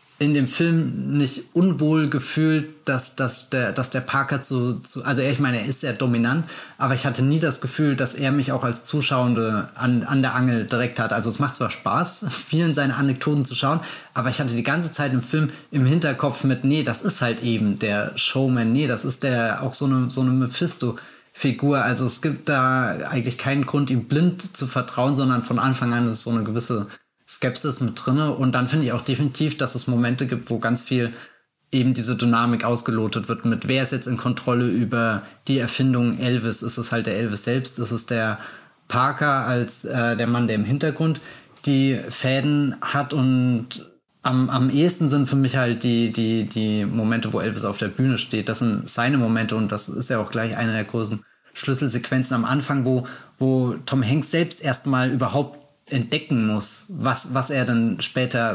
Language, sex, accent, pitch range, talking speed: German, male, German, 120-140 Hz, 200 wpm